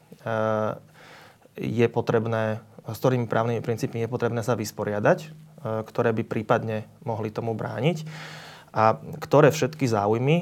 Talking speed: 115 wpm